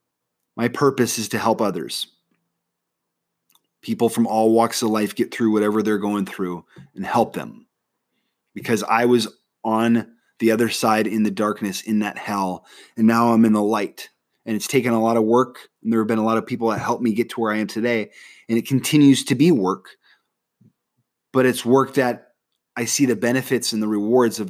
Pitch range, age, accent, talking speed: 110-135 Hz, 20-39, American, 200 wpm